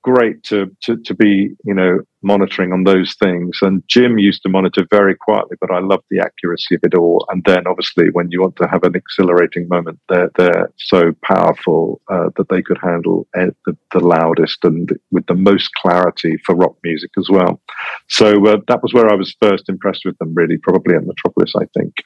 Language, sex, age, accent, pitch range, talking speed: English, male, 40-59, British, 90-100 Hz, 205 wpm